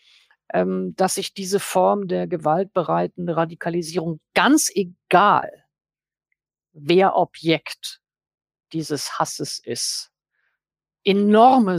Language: German